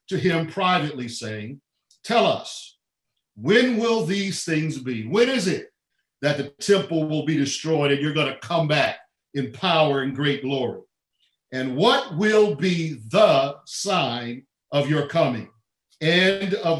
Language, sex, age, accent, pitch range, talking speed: English, male, 50-69, American, 135-180 Hz, 150 wpm